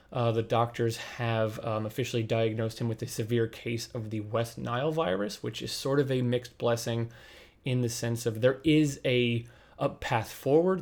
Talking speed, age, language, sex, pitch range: 190 wpm, 20-39, English, male, 115-125 Hz